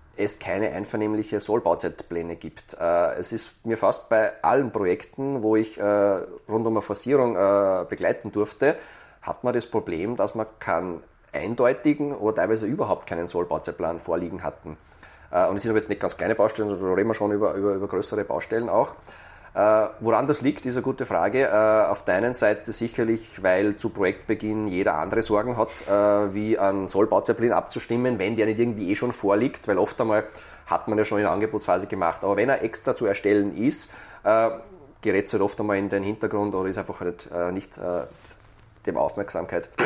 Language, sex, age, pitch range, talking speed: German, male, 30-49, 100-115 Hz, 195 wpm